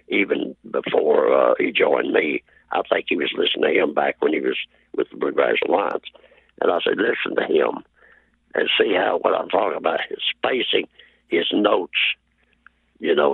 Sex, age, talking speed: male, 60-79, 180 wpm